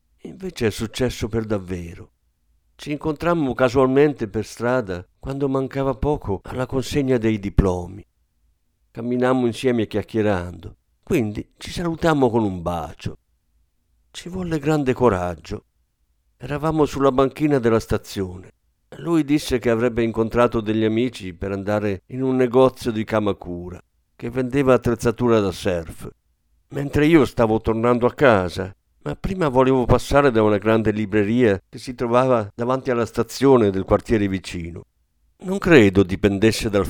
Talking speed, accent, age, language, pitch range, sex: 130 wpm, native, 50-69, Italian, 95-130 Hz, male